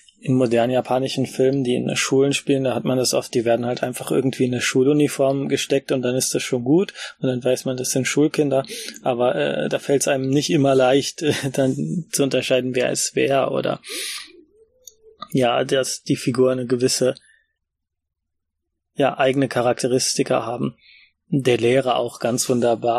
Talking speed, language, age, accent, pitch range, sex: 175 wpm, German, 20-39, German, 120-135 Hz, male